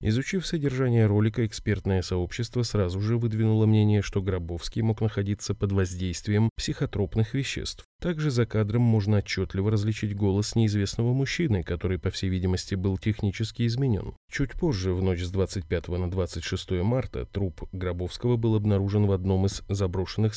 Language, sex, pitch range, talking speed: Russian, male, 95-115 Hz, 145 wpm